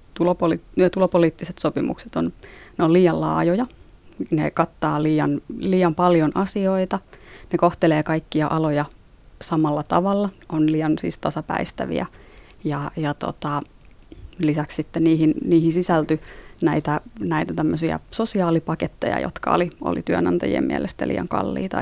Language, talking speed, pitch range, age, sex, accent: Finnish, 110 wpm, 155-175 Hz, 30-49, female, native